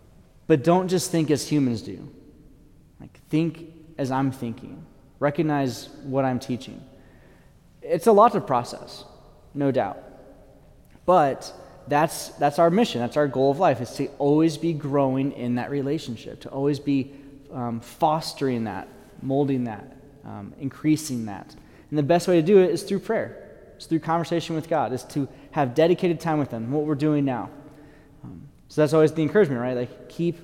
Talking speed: 170 wpm